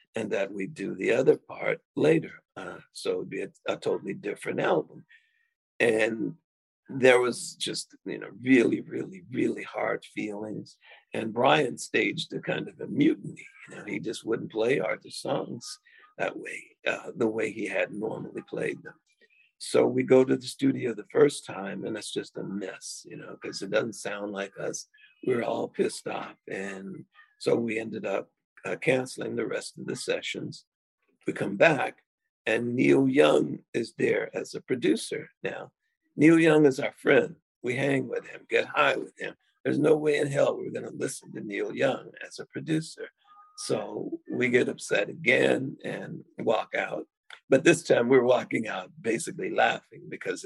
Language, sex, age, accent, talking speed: English, male, 50-69, American, 180 wpm